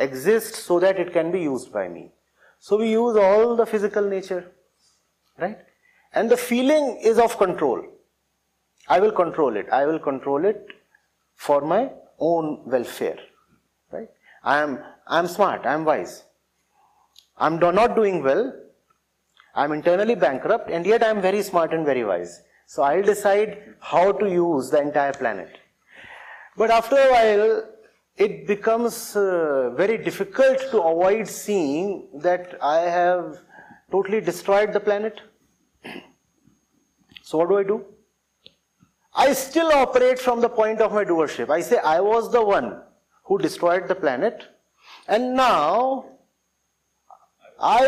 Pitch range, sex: 180-250 Hz, male